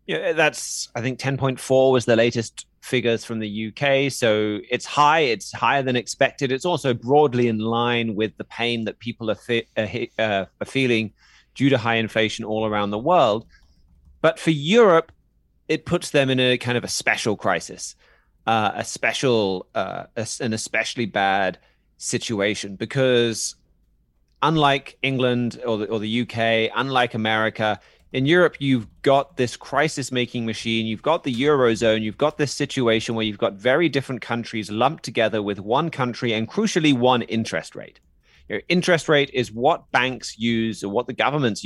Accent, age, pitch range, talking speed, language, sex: British, 30-49, 105-130 Hz, 160 wpm, English, male